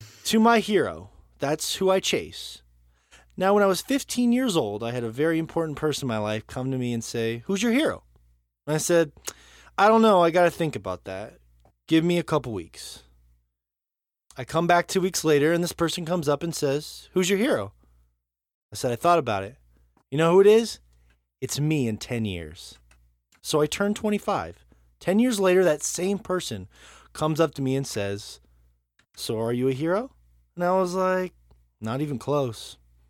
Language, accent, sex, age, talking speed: English, American, male, 20-39, 195 wpm